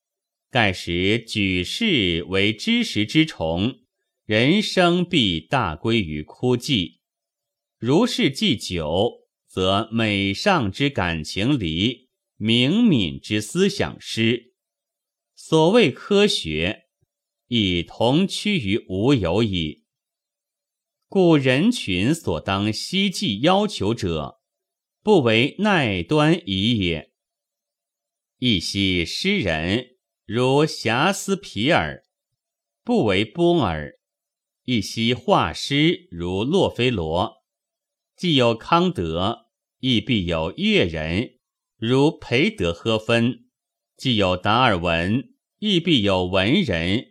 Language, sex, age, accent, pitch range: Chinese, male, 30-49, native, 95-155 Hz